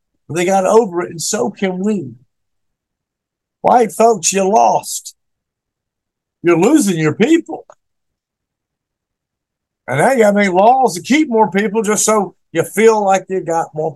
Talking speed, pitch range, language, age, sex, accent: 150 wpm, 160-225 Hz, English, 50-69, male, American